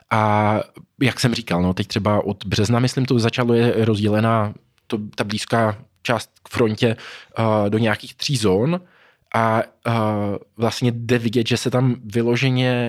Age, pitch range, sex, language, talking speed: 20-39, 110-125 Hz, male, Czech, 140 wpm